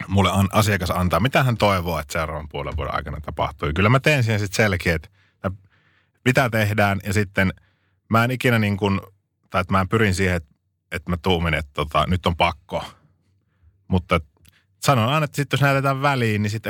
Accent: native